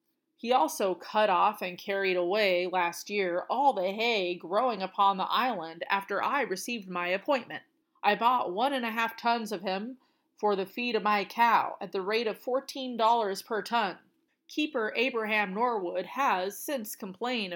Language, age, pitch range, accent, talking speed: English, 30-49, 195-260 Hz, American, 165 wpm